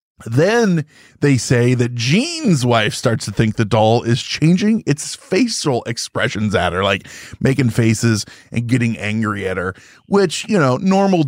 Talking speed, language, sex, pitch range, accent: 160 wpm, English, male, 120-160 Hz, American